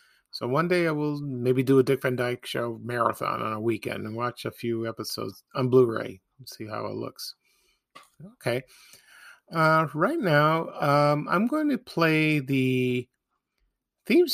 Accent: American